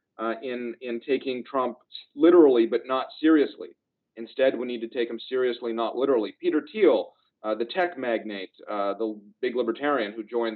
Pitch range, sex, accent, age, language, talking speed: 115-140 Hz, male, American, 40-59, English, 170 wpm